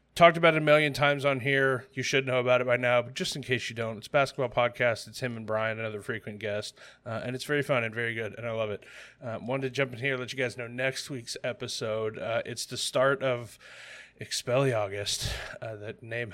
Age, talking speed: 20-39, 245 wpm